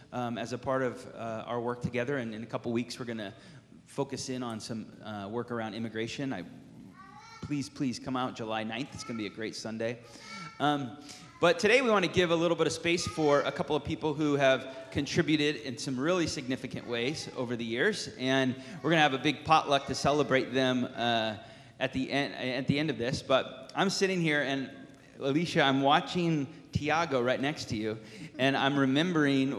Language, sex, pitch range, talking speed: English, male, 120-145 Hz, 210 wpm